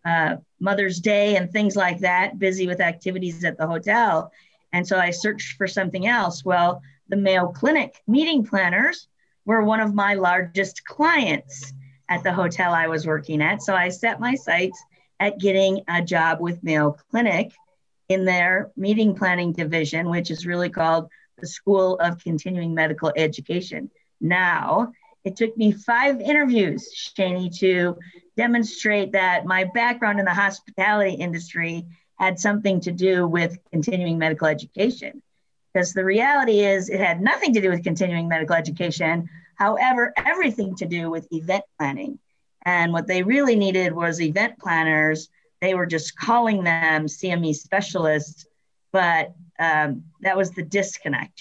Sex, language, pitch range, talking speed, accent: female, English, 170-205 Hz, 155 wpm, American